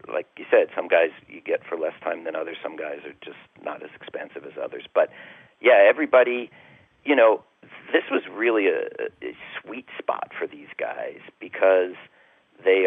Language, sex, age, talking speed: English, male, 40-59, 175 wpm